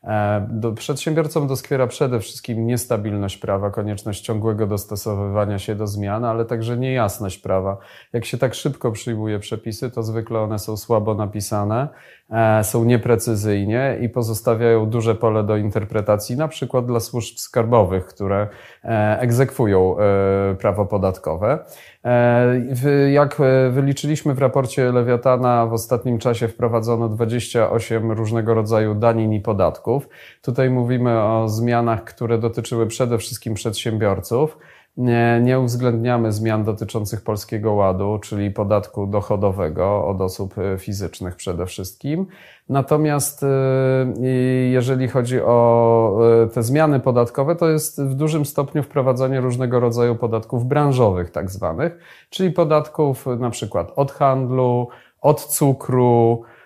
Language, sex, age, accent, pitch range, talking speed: Polish, male, 30-49, native, 110-130 Hz, 120 wpm